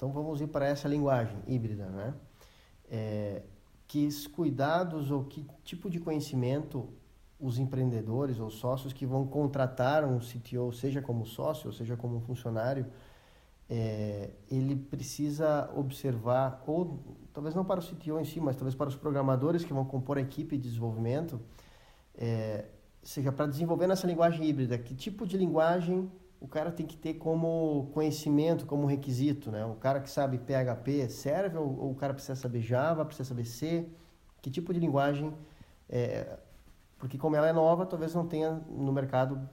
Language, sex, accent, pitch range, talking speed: Portuguese, male, Brazilian, 130-155 Hz, 165 wpm